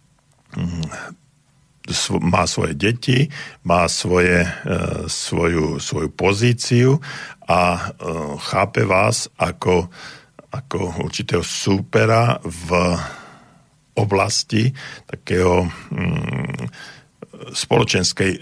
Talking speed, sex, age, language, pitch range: 60 wpm, male, 50-69, Slovak, 80-110 Hz